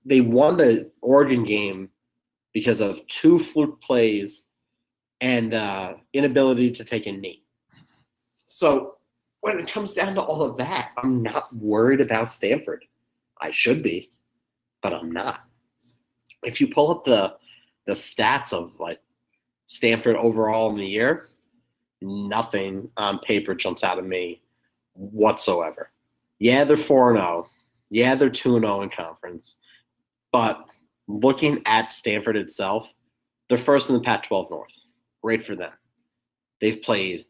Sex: male